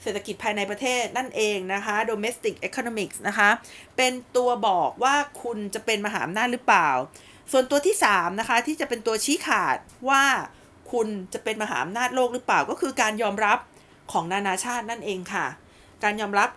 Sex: female